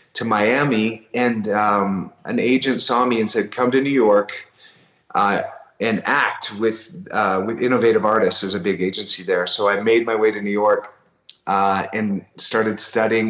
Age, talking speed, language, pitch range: 30-49, 175 wpm, English, 105-120 Hz